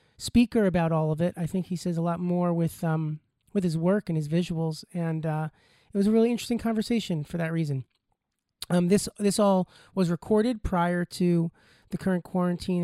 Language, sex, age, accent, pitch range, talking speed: English, male, 30-49, American, 165-195 Hz, 195 wpm